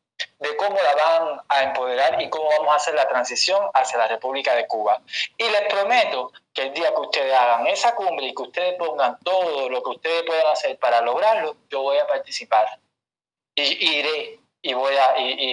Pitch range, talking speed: 140-200 Hz, 205 wpm